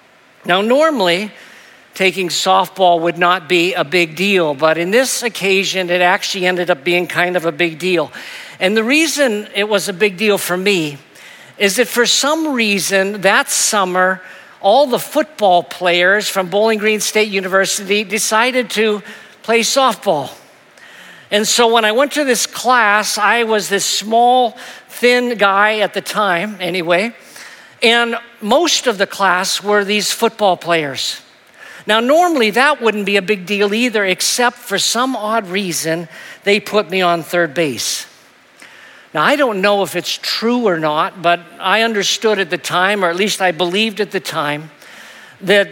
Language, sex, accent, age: English, male, American, 50-69